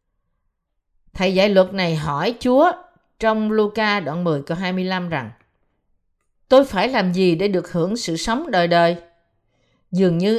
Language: Vietnamese